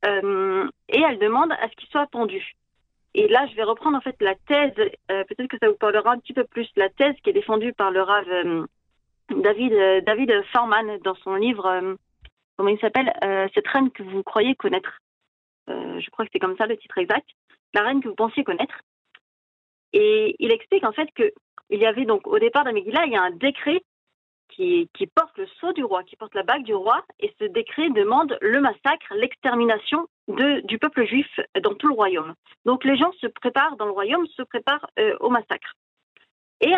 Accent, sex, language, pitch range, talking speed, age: French, female, French, 220-360 Hz, 210 wpm, 40-59